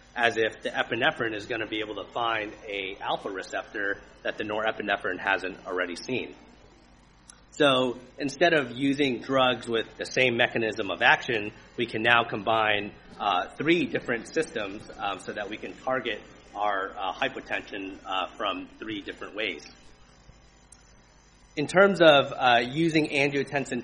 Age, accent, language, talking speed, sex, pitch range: 30-49, American, English, 145 wpm, male, 110-135 Hz